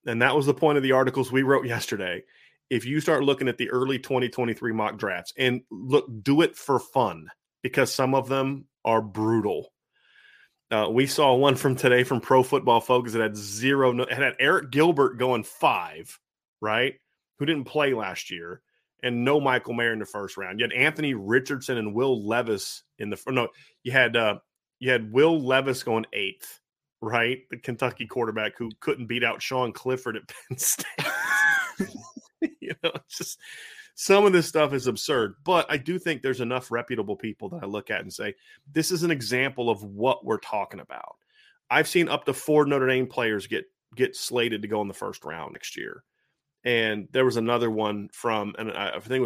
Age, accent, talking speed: 30-49, American, 190 wpm